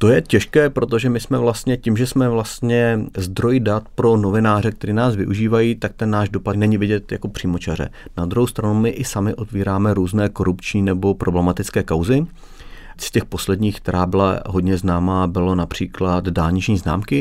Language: Czech